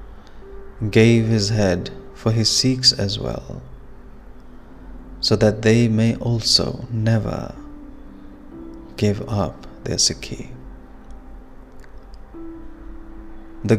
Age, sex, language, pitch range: 30-49, male, English, 95-120 Hz